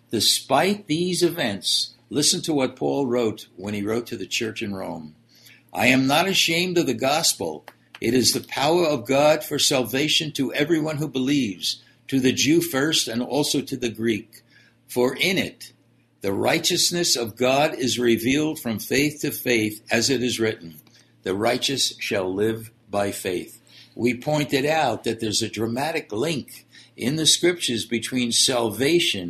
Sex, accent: male, American